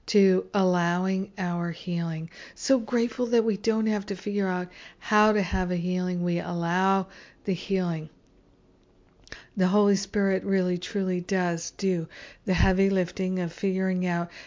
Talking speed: 145 wpm